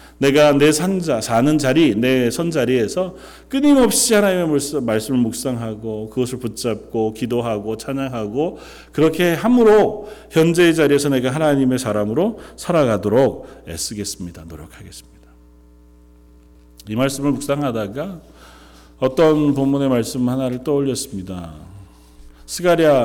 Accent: native